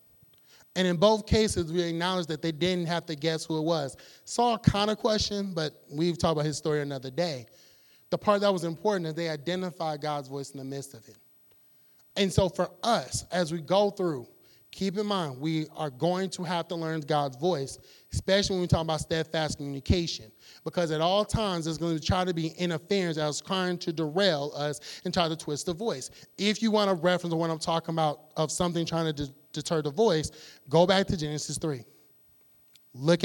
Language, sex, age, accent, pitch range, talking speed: English, male, 30-49, American, 150-185 Hz, 205 wpm